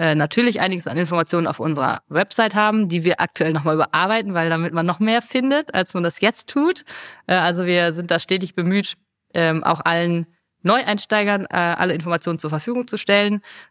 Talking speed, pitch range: 170 wpm, 165-195 Hz